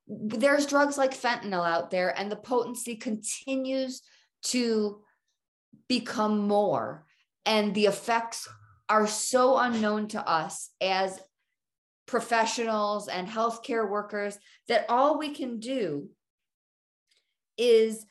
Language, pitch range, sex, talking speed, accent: English, 200-240 Hz, female, 105 wpm, American